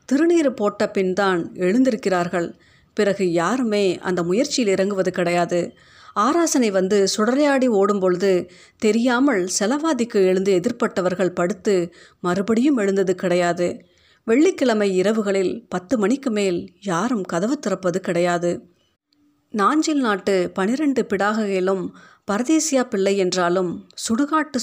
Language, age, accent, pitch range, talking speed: Tamil, 30-49, native, 185-245 Hz, 100 wpm